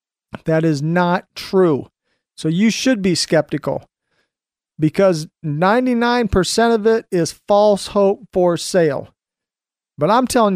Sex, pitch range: male, 170-225 Hz